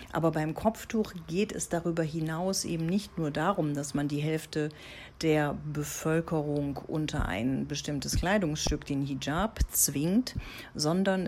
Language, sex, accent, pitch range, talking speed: German, female, German, 145-180 Hz, 135 wpm